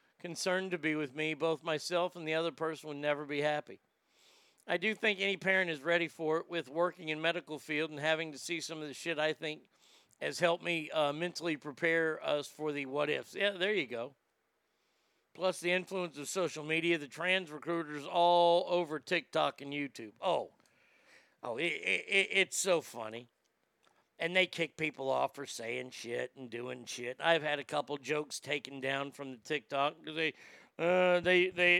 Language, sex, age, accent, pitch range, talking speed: English, male, 50-69, American, 145-175 Hz, 185 wpm